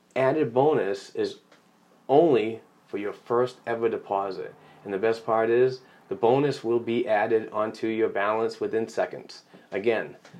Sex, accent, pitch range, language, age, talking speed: male, American, 110-125 Hz, English, 30-49, 145 wpm